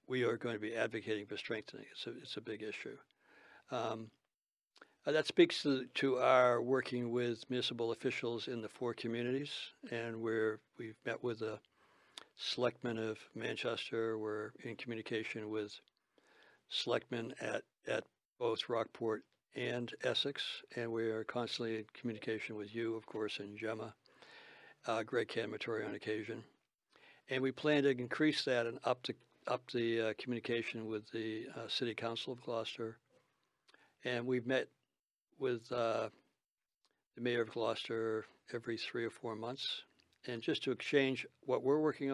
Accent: American